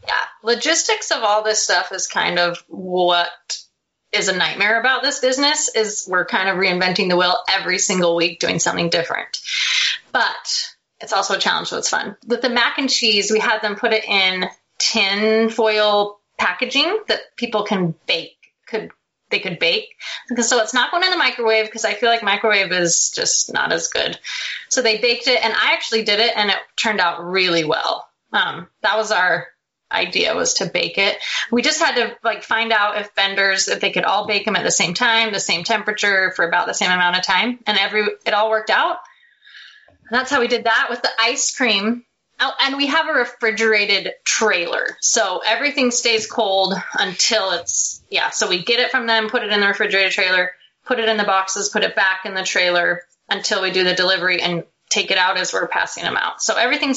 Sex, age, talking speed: female, 20-39, 210 wpm